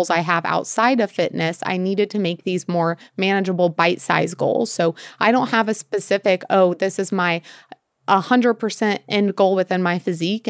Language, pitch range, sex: English, 175-205 Hz, female